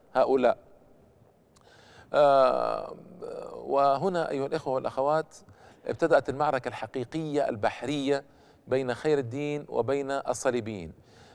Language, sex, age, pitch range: Arabic, male, 50-69, 130-155 Hz